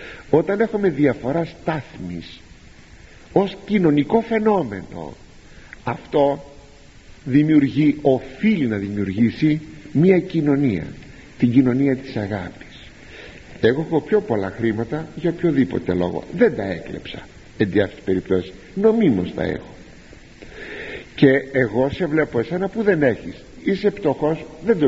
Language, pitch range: Greek, 120-180 Hz